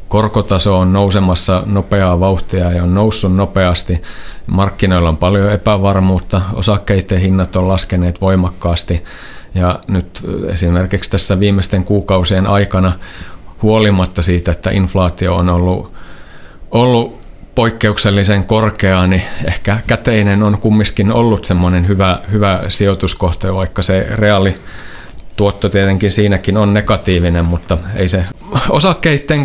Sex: male